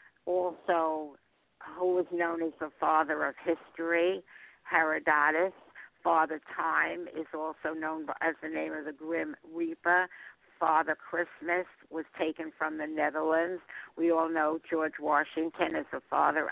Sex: female